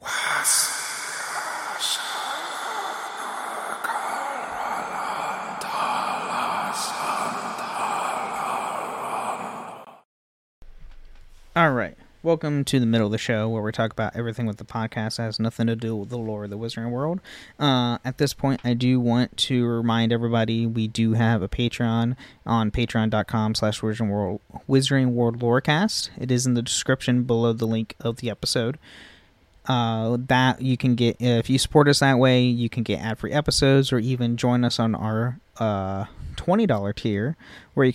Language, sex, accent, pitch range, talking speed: English, male, American, 110-135 Hz, 140 wpm